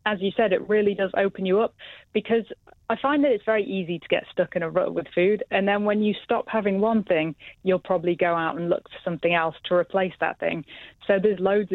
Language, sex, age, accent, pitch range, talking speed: English, female, 20-39, British, 170-205 Hz, 245 wpm